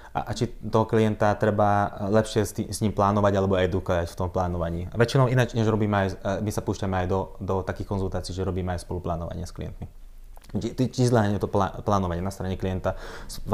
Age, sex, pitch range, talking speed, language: 20-39, male, 95-115 Hz, 205 wpm, Slovak